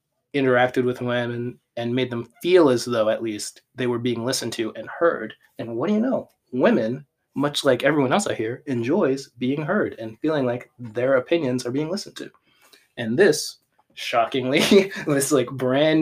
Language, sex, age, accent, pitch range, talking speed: English, male, 20-39, American, 115-140 Hz, 180 wpm